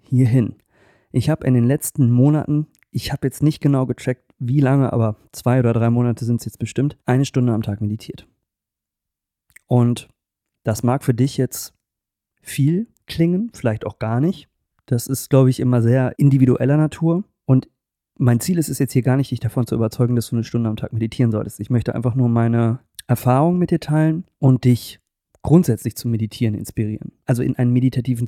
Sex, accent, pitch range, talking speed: male, German, 115-135 Hz, 190 wpm